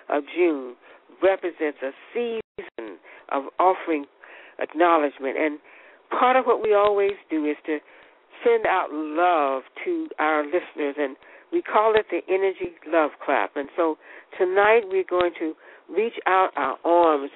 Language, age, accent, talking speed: English, 60-79, American, 140 wpm